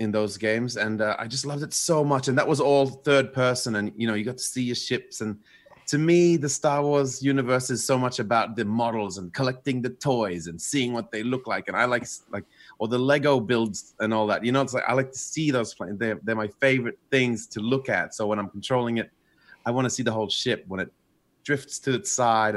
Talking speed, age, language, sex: 260 wpm, 30-49, English, male